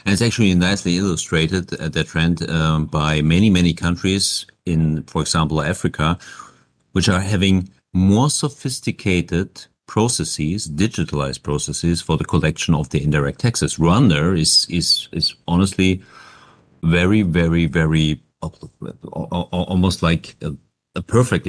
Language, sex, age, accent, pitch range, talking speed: German, male, 50-69, German, 80-95 Hz, 125 wpm